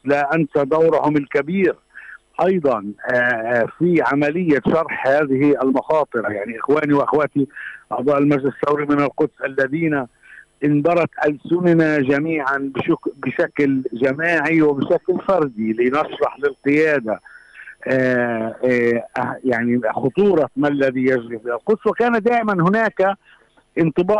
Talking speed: 105 wpm